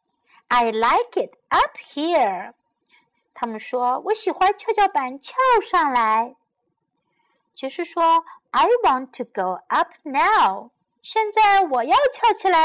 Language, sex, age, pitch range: Chinese, female, 50-69, 255-380 Hz